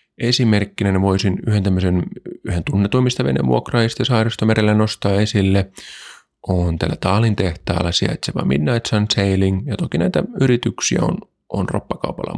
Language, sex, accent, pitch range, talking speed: Finnish, male, native, 100-125 Hz, 115 wpm